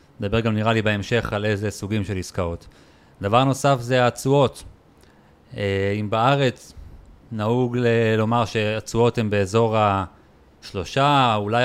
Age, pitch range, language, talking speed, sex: 30-49, 100-130 Hz, Hebrew, 120 wpm, male